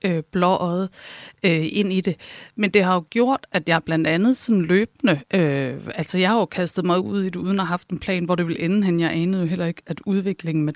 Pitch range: 170-205 Hz